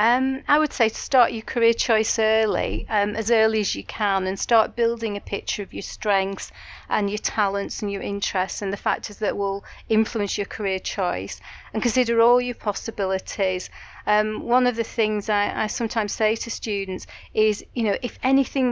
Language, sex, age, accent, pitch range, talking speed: English, female, 40-59, British, 195-225 Hz, 190 wpm